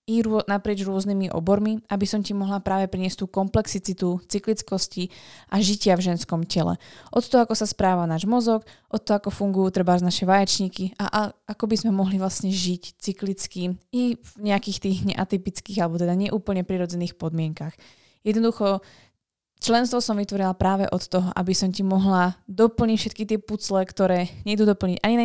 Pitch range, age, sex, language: 180-205 Hz, 20-39, female, Slovak